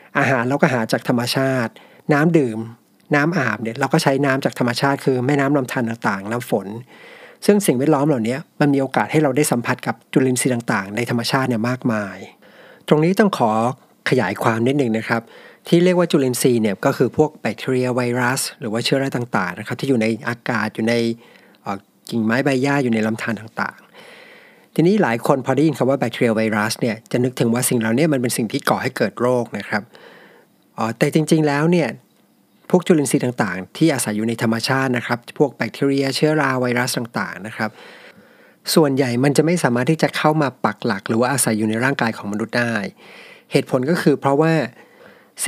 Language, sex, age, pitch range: Thai, male, 60-79, 115-150 Hz